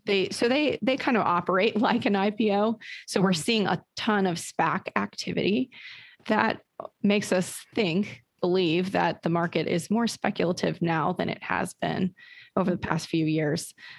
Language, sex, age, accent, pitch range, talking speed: English, female, 30-49, American, 170-210 Hz, 165 wpm